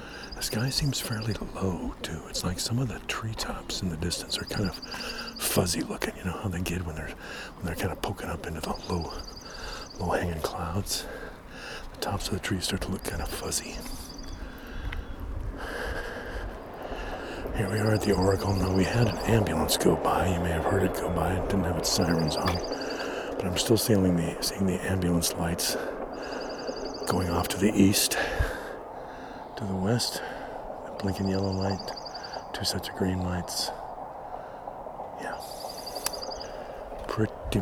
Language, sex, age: English, male, 50-69